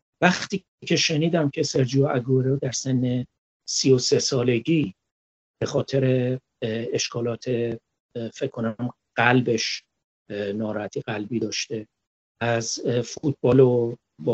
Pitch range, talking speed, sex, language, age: 125-160 Hz, 105 wpm, male, Persian, 50-69